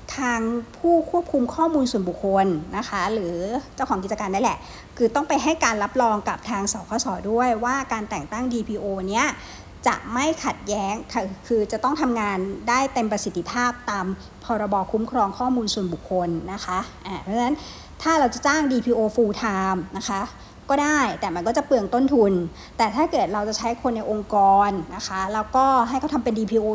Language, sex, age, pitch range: English, male, 60-79, 200-250 Hz